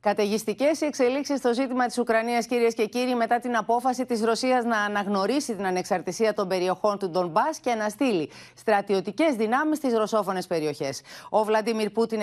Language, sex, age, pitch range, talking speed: Greek, female, 30-49, 190-250 Hz, 165 wpm